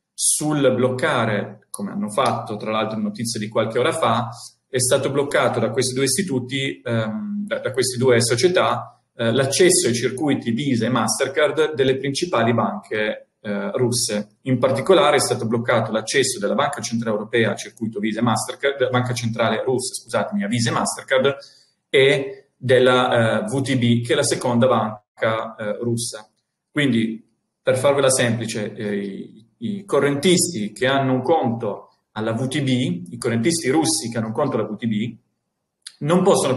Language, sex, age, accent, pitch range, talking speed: Italian, male, 40-59, native, 115-140 Hz, 160 wpm